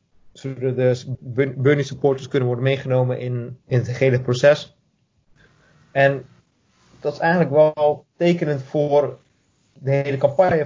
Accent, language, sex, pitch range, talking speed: Dutch, Dutch, male, 125-140 Hz, 130 wpm